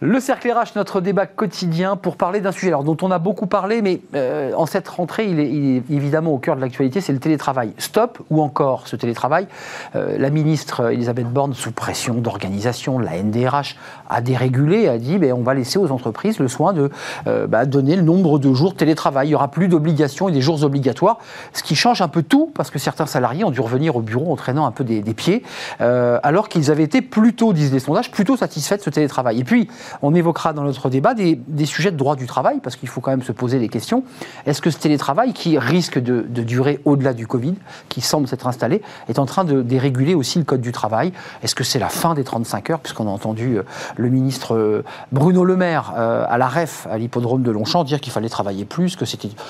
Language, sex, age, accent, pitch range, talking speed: French, male, 40-59, French, 125-170 Hz, 235 wpm